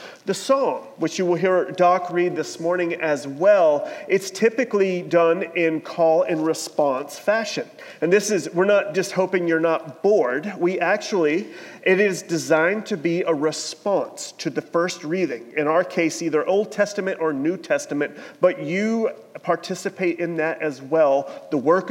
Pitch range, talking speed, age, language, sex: 165-200 Hz, 165 wpm, 40-59, English, male